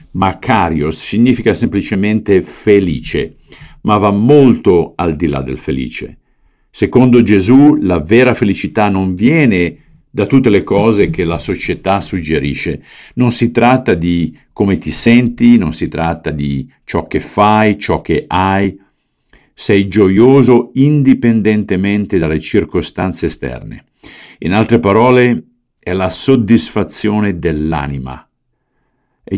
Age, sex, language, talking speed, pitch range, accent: 50-69, male, Italian, 120 wpm, 85-120 Hz, native